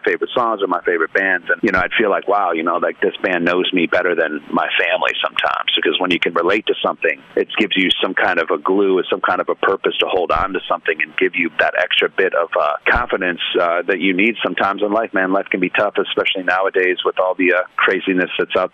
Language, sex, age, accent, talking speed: English, male, 40-59, American, 260 wpm